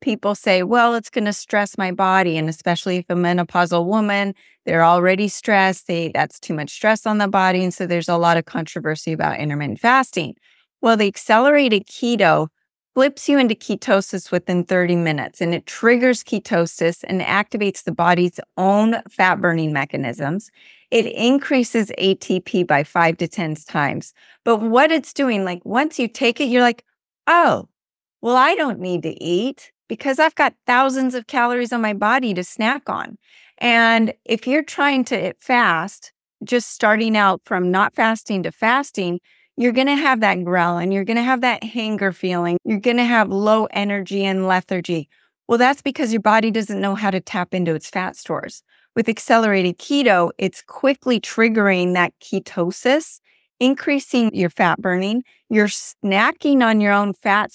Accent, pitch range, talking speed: American, 180-245 Hz, 170 wpm